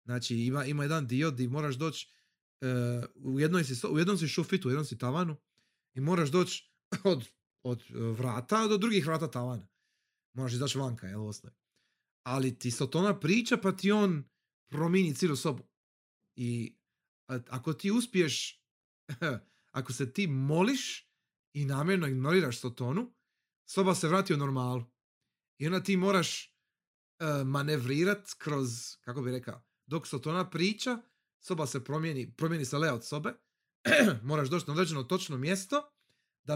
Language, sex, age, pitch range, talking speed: Croatian, male, 30-49, 125-180 Hz, 150 wpm